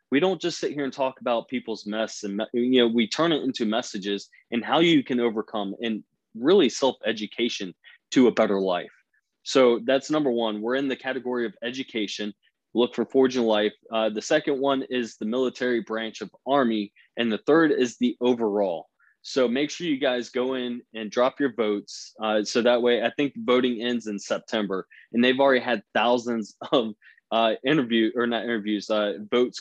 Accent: American